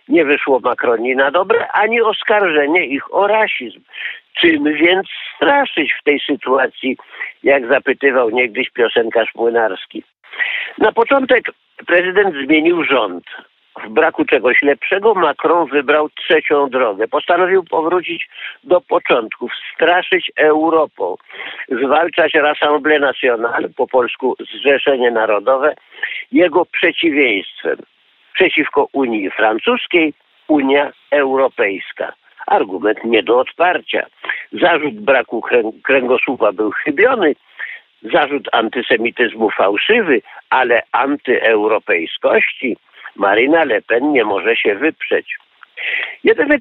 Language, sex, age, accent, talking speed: Polish, male, 50-69, native, 100 wpm